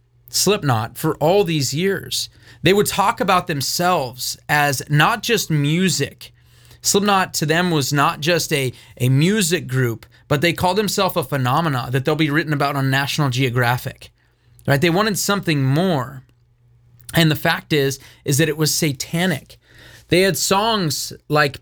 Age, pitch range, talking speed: 30-49, 135-180 Hz, 155 wpm